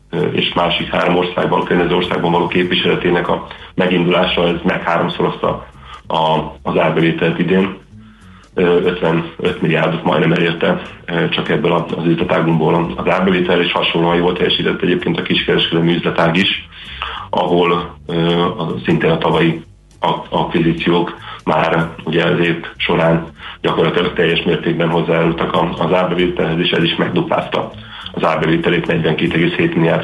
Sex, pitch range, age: male, 85-90 Hz, 40-59